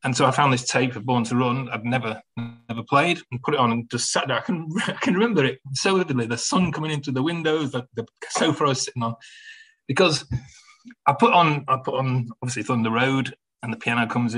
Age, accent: 30-49, British